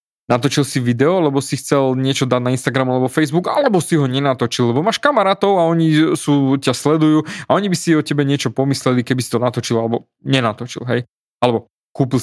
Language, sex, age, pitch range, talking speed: Slovak, male, 20-39, 120-150 Hz, 200 wpm